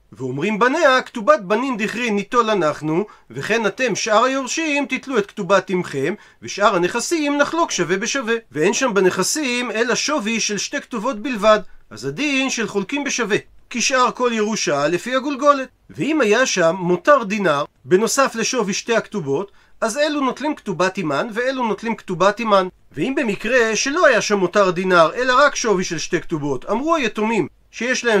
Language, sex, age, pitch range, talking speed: Hebrew, male, 40-59, 195-260 Hz, 155 wpm